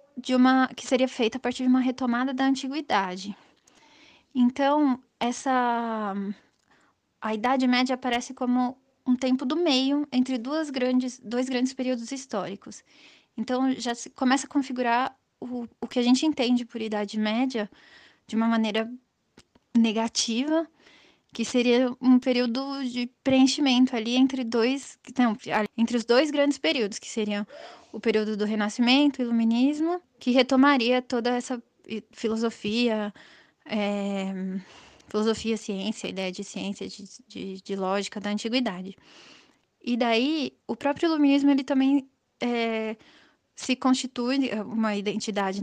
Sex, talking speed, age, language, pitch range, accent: female, 135 wpm, 20-39, Portuguese, 225-265 Hz, Brazilian